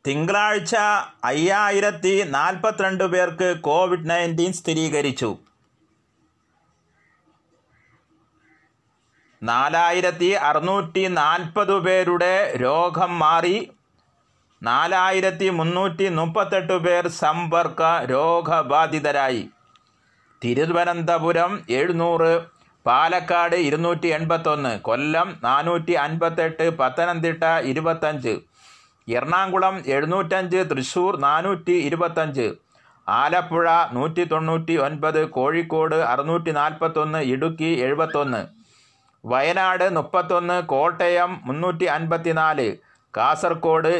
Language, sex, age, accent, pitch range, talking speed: Malayalam, male, 30-49, native, 155-180 Hz, 65 wpm